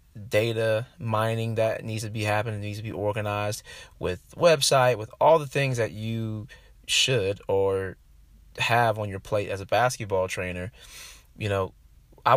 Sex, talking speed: male, 155 wpm